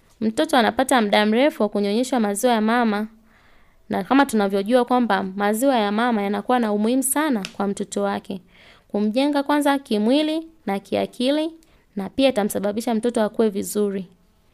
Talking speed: 140 wpm